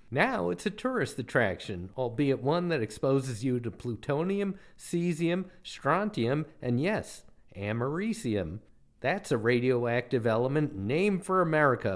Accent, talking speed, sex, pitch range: American, 120 wpm, male, 110-165 Hz